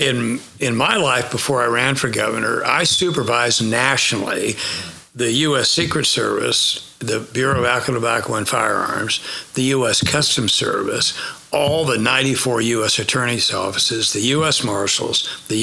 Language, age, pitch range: English, 60-79, 115-135 Hz